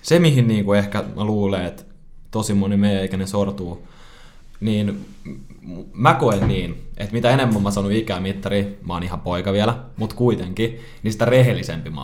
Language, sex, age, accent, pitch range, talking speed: Finnish, male, 20-39, native, 95-115 Hz, 160 wpm